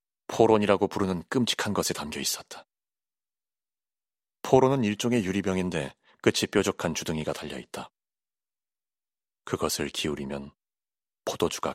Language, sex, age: Korean, male, 30-49